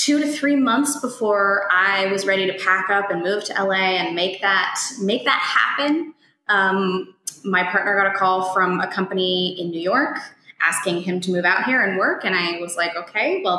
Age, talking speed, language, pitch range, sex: 20-39, 210 wpm, English, 170-205 Hz, female